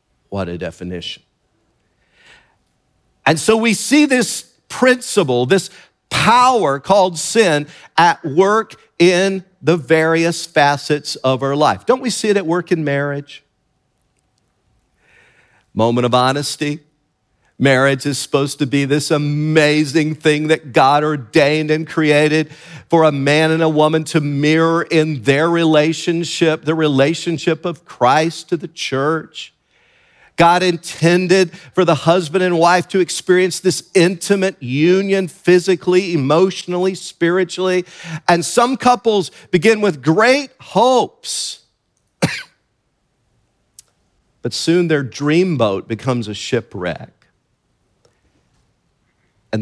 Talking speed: 115 wpm